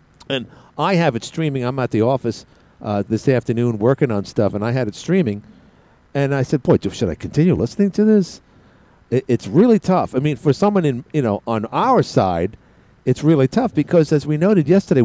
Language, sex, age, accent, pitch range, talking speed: English, male, 50-69, American, 115-160 Hz, 210 wpm